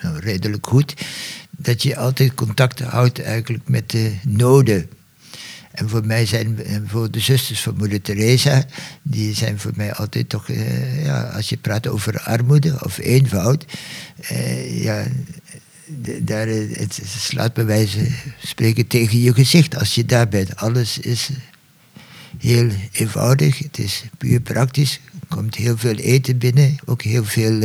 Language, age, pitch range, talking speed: Dutch, 60-79, 110-140 Hz, 145 wpm